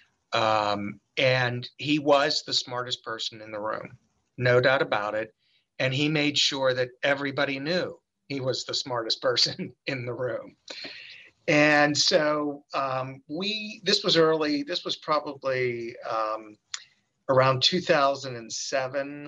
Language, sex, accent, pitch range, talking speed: English, male, American, 115-145 Hz, 130 wpm